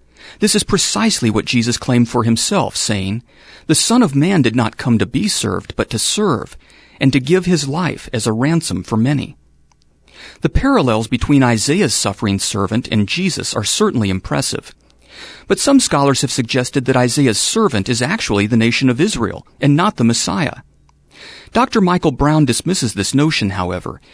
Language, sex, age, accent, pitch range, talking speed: English, male, 40-59, American, 105-155 Hz, 170 wpm